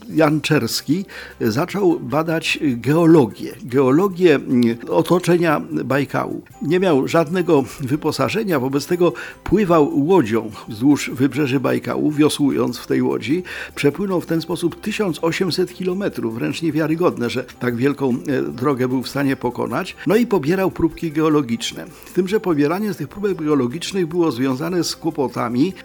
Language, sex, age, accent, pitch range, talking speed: Polish, male, 50-69, native, 135-175 Hz, 130 wpm